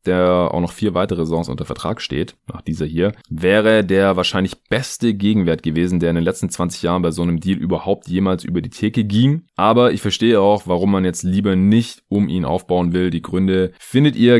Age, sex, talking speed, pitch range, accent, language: 20-39, male, 215 wpm, 85-105 Hz, German, German